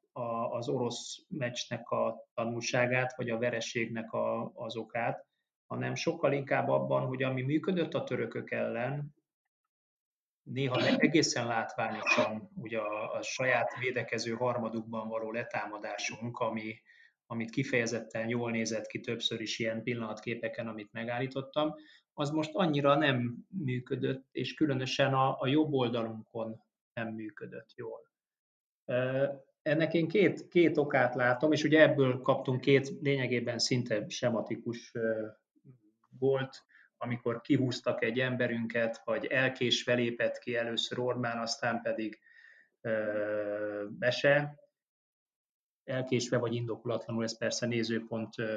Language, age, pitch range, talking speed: Hungarian, 30-49, 115-135 Hz, 115 wpm